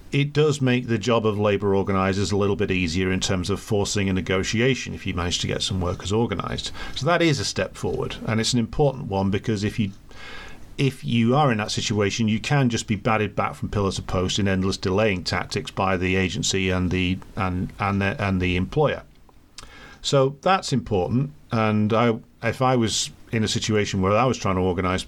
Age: 40-59